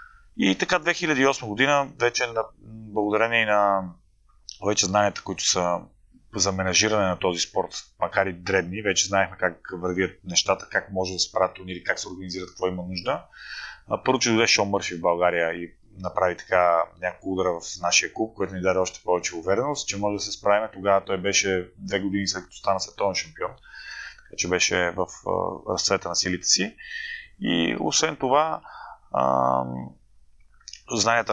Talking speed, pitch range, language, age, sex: 160 wpm, 90-110 Hz, Bulgarian, 30-49, male